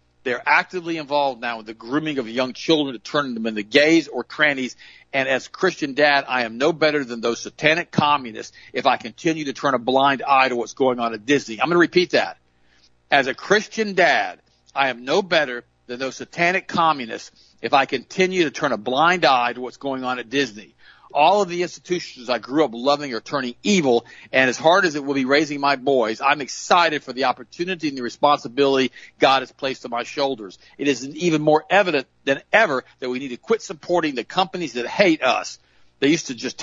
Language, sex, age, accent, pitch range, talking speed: English, male, 50-69, American, 120-155 Hz, 215 wpm